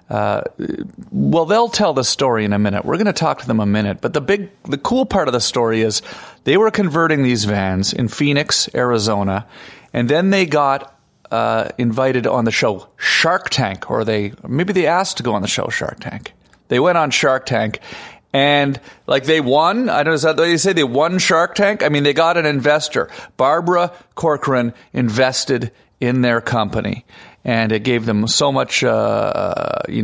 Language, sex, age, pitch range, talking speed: English, male, 40-59, 110-145 Hz, 195 wpm